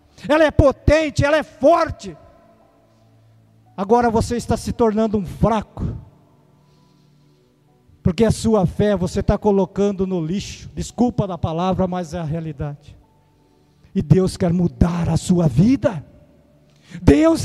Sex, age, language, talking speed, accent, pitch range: male, 50-69, Portuguese, 125 wpm, Brazilian, 180-285 Hz